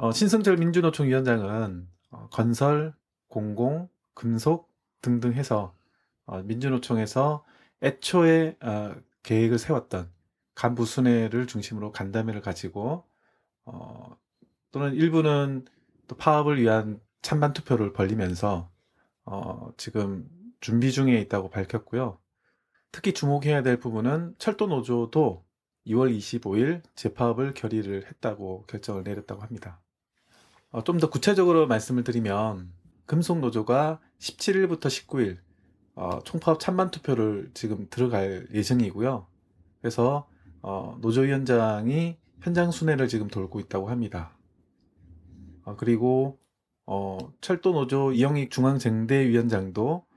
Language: Korean